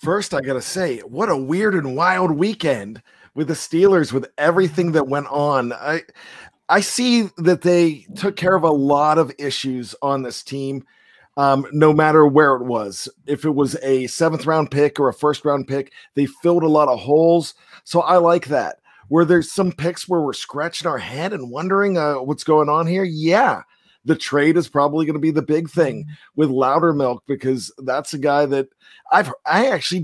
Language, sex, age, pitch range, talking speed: English, male, 40-59, 140-170 Hz, 190 wpm